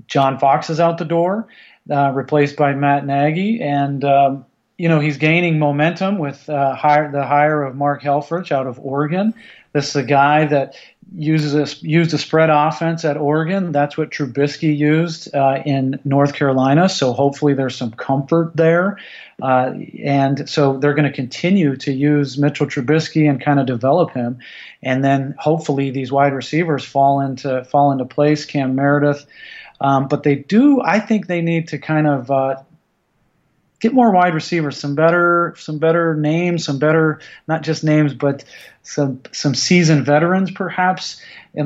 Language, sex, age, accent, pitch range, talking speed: English, male, 40-59, American, 140-160 Hz, 170 wpm